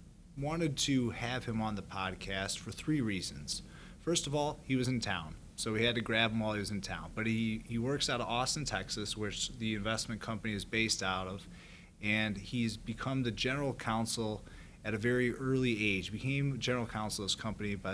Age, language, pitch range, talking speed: 30-49, English, 100-115 Hz, 205 wpm